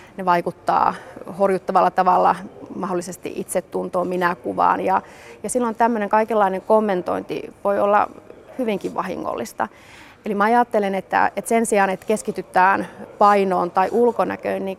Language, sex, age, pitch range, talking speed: Finnish, female, 30-49, 185-215 Hz, 120 wpm